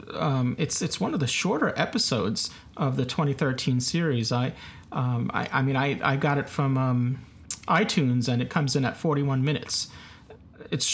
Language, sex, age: English, male, 40-59